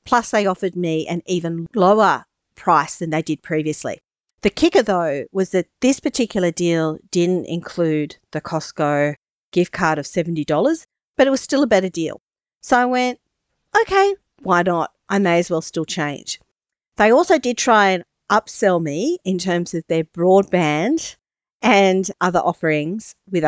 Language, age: English, 50-69